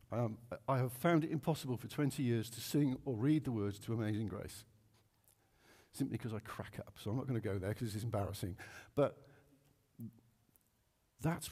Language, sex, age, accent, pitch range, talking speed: English, male, 50-69, British, 115-150 Hz, 180 wpm